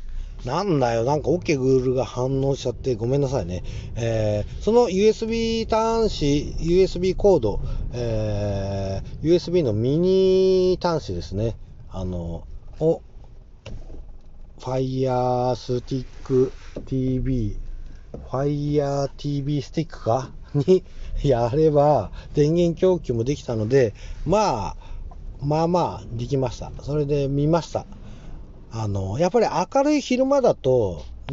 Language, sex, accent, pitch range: Japanese, male, native, 110-170 Hz